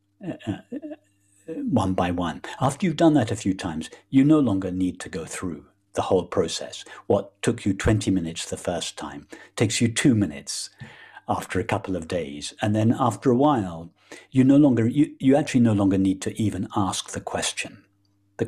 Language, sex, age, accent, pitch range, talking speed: English, male, 50-69, British, 95-115 Hz, 195 wpm